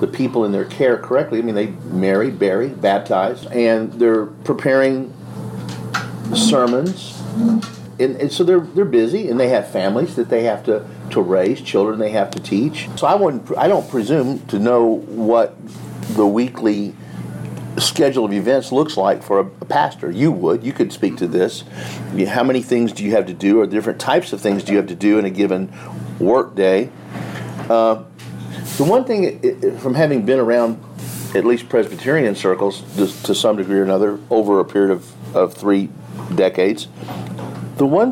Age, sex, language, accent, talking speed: 50-69, male, English, American, 180 wpm